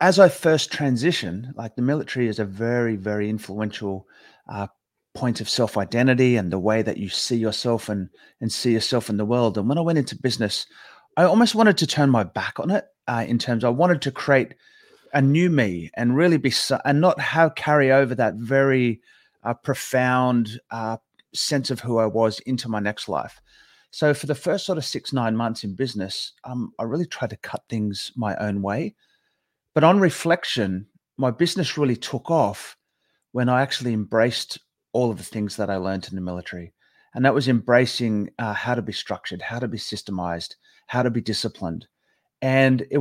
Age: 30-49